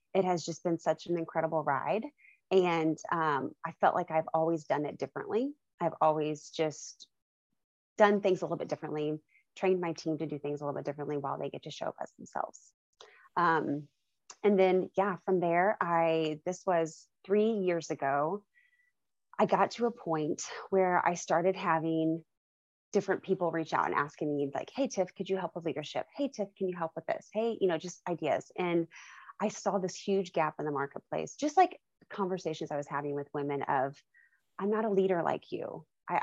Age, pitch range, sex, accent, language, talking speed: 20-39, 150-190 Hz, female, American, English, 195 wpm